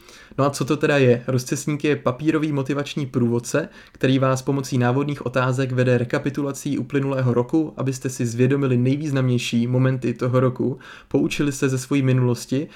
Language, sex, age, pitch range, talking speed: Czech, male, 30-49, 125-140 Hz, 150 wpm